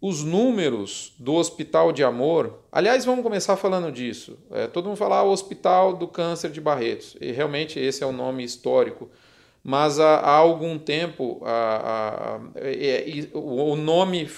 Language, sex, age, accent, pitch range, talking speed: Portuguese, male, 40-59, Brazilian, 150-205 Hz, 165 wpm